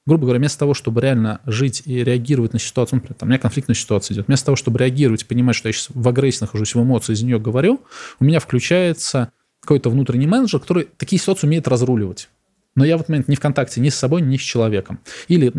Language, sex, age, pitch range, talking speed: Russian, male, 20-39, 120-150 Hz, 235 wpm